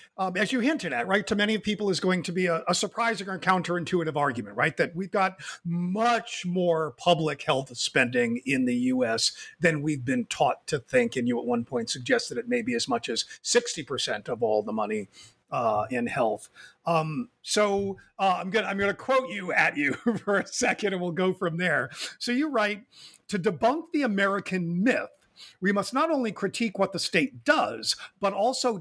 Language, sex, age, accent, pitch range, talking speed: English, male, 50-69, American, 175-235 Hz, 200 wpm